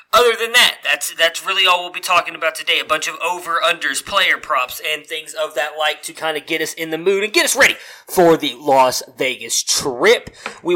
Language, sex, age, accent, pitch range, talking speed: English, male, 30-49, American, 145-180 Hz, 230 wpm